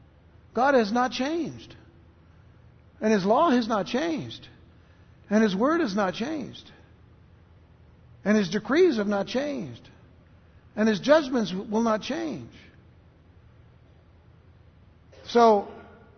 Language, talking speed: English, 110 wpm